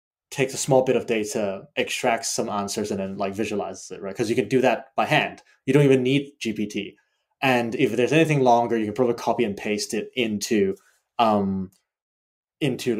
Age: 20-39